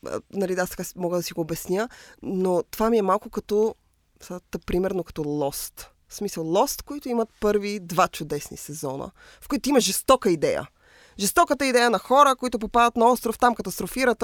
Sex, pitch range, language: female, 170-230 Hz, Bulgarian